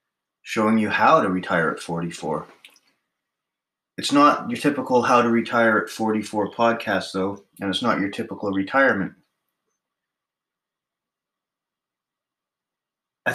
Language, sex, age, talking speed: English, male, 30-49, 110 wpm